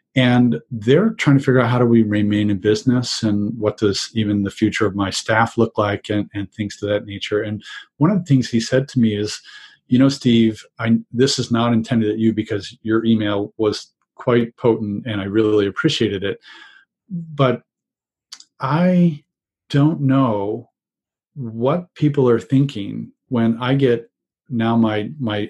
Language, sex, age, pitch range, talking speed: English, male, 40-59, 105-130 Hz, 175 wpm